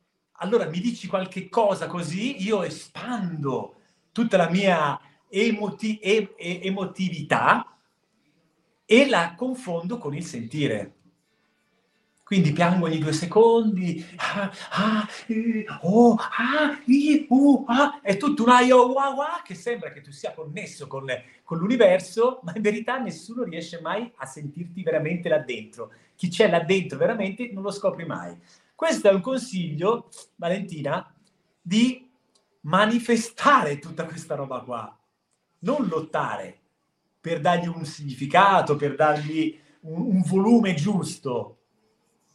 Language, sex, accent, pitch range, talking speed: Italian, male, native, 160-230 Hz, 110 wpm